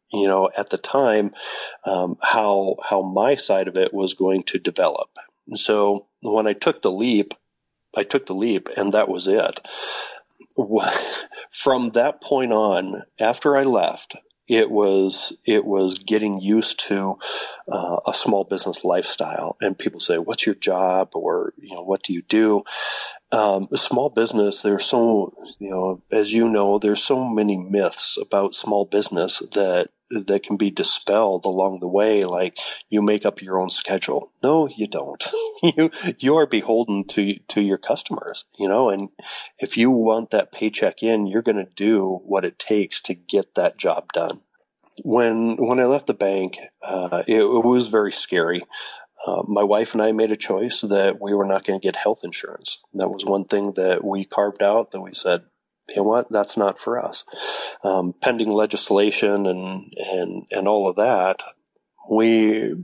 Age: 40-59